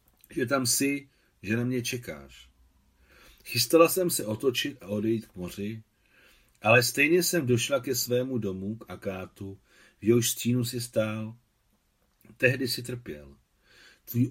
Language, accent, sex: Czech, native, male